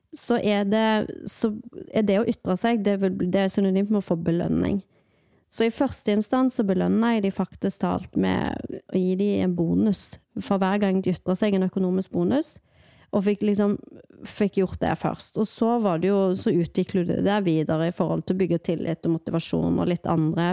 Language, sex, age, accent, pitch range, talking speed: English, female, 30-49, Swedish, 180-215 Hz, 190 wpm